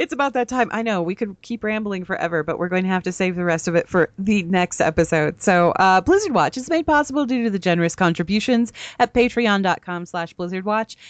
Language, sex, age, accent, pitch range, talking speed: English, female, 30-49, American, 170-215 Hz, 225 wpm